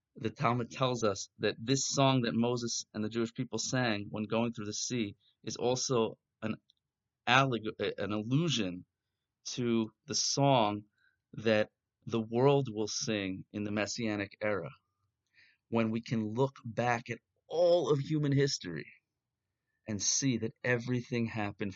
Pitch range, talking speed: 105-125 Hz, 140 wpm